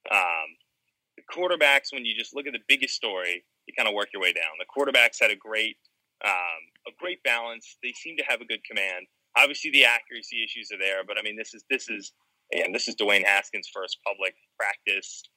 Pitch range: 105-145 Hz